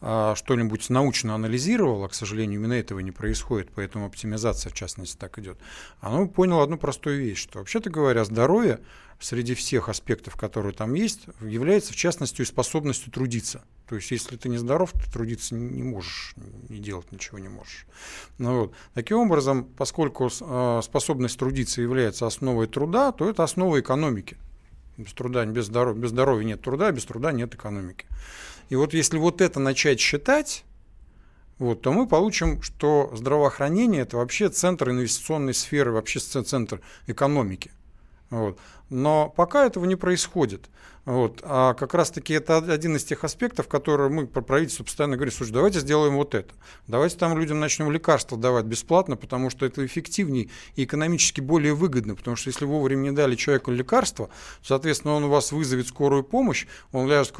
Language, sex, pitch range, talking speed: Russian, male, 115-150 Hz, 165 wpm